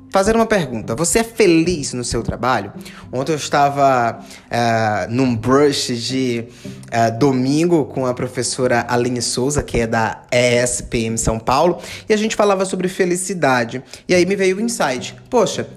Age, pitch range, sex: 20-39, 130-190 Hz, male